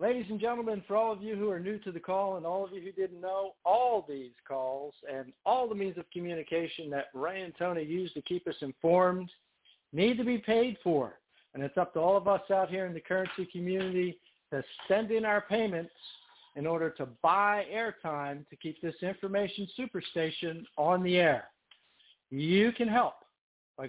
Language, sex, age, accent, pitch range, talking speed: English, male, 60-79, American, 165-210 Hz, 195 wpm